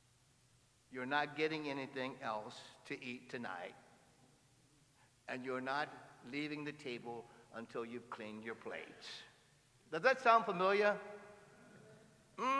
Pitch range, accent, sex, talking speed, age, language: 135-215 Hz, American, male, 115 wpm, 60-79, English